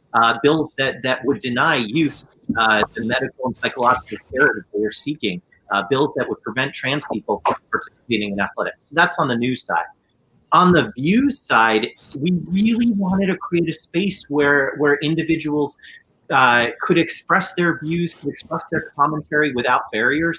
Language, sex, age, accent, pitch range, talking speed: English, male, 30-49, American, 120-165 Hz, 175 wpm